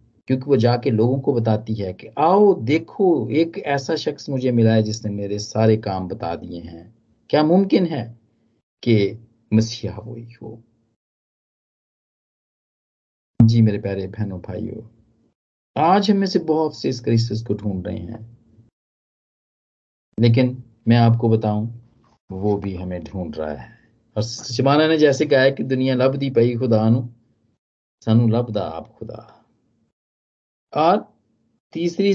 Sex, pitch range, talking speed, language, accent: male, 110-130 Hz, 135 wpm, Hindi, native